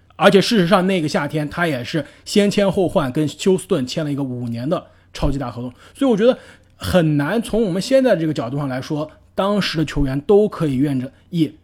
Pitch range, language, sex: 130-185 Hz, Chinese, male